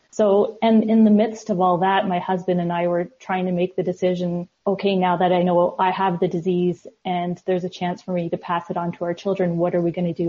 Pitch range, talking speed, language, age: 180-200 Hz, 270 wpm, English, 30-49